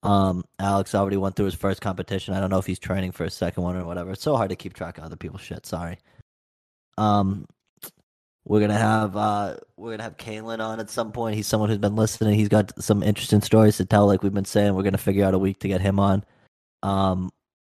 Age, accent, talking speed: 20-39, American, 240 wpm